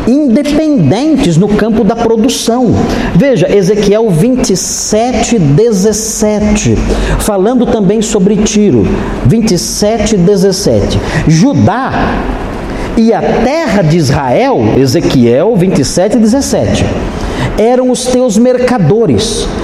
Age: 50-69